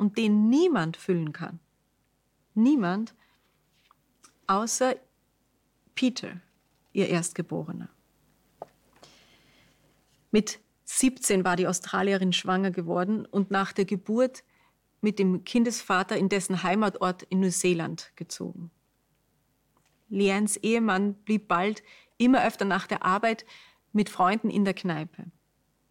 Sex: female